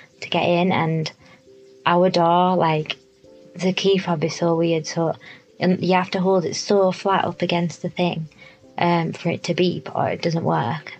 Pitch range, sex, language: 160-180 Hz, female, English